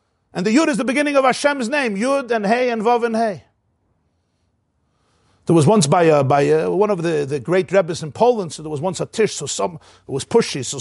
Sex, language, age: male, English, 50-69